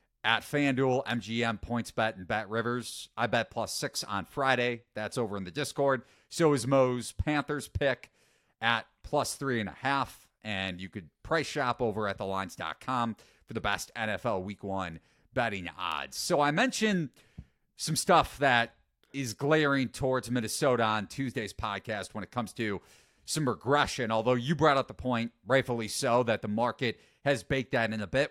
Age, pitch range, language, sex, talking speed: 40-59, 110-140 Hz, English, male, 180 wpm